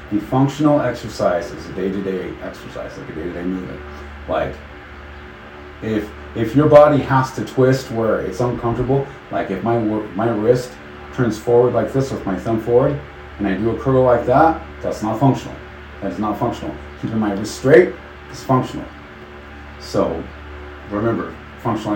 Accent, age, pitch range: American, 30-49, 75-120 Hz